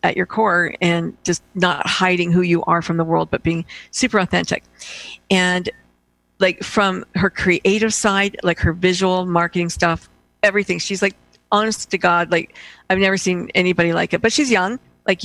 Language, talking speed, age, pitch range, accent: English, 175 wpm, 50-69, 170-195 Hz, American